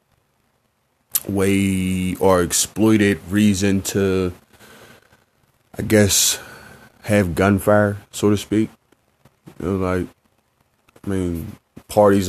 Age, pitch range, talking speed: 20-39, 85-105 Hz, 90 wpm